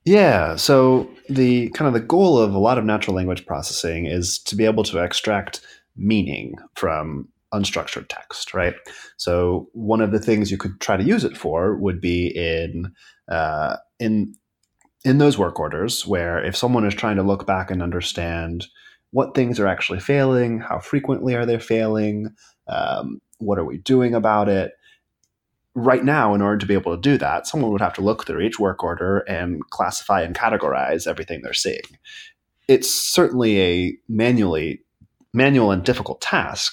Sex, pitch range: male, 95-125 Hz